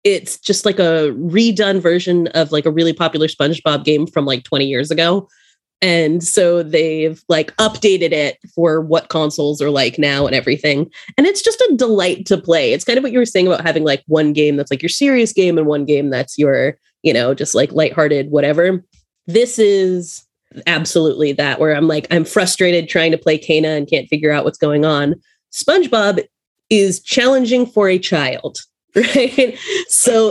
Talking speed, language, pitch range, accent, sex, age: 190 wpm, English, 155-200 Hz, American, female, 20-39